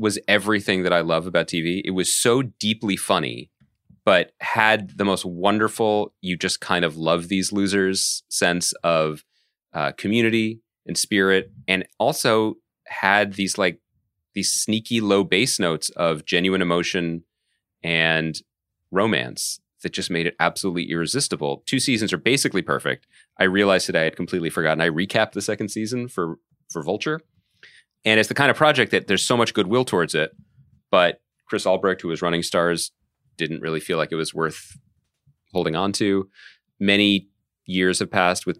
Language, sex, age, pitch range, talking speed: English, male, 30-49, 80-100 Hz, 165 wpm